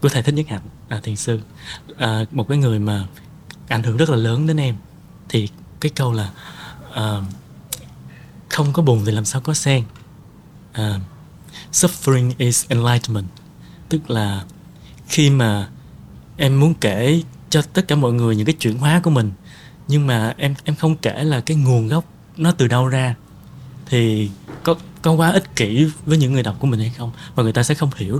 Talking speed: 190 wpm